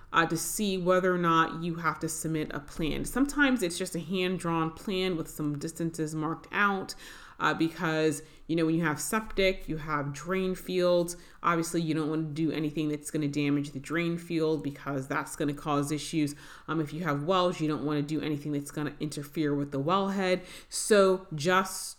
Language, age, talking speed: English, 30-49, 205 wpm